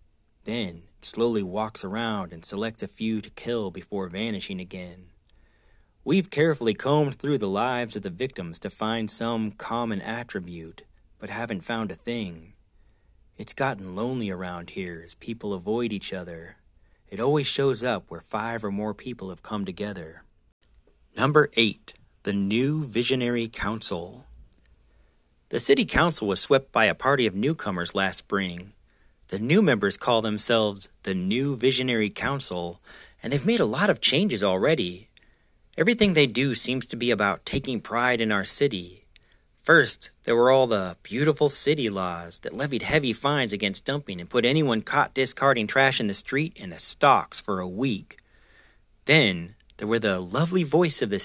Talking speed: 165 wpm